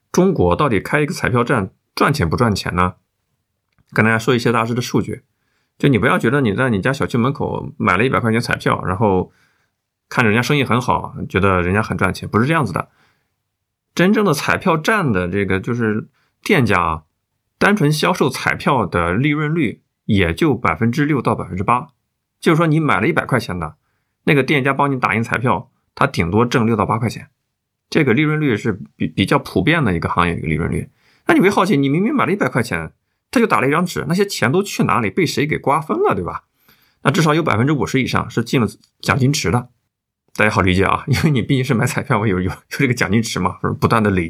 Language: Chinese